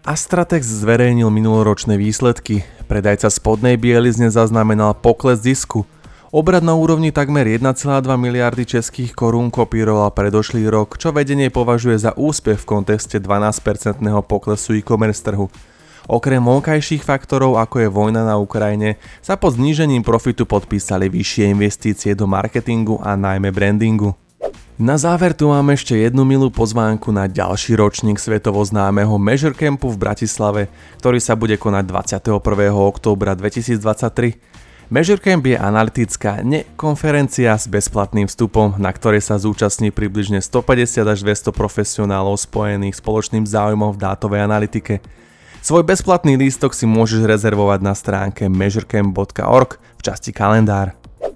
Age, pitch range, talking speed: 20-39, 105-125 Hz, 130 wpm